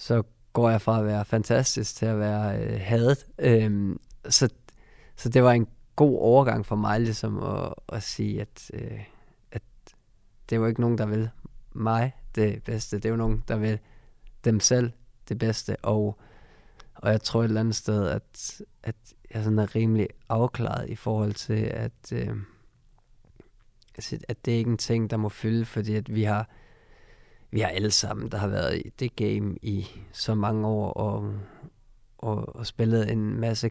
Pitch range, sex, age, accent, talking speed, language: 105-115 Hz, male, 20-39, native, 180 wpm, Danish